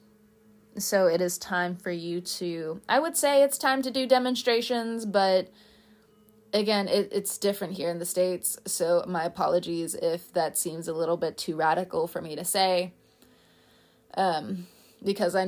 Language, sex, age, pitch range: English, female, 20-39, 170-200 Hz